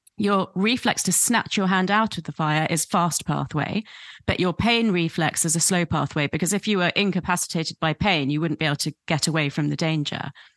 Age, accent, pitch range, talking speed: 30-49, British, 155-190 Hz, 215 wpm